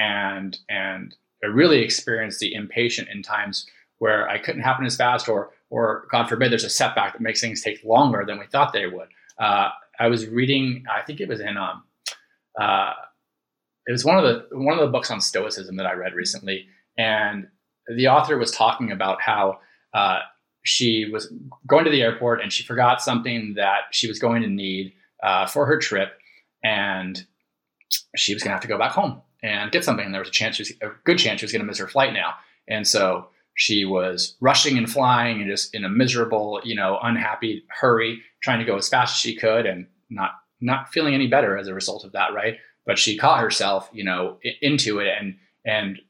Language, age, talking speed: English, 20-39, 210 wpm